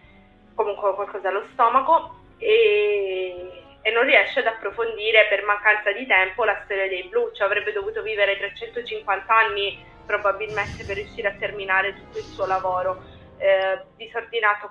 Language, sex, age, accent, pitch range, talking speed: Italian, female, 20-39, native, 190-225 Hz, 145 wpm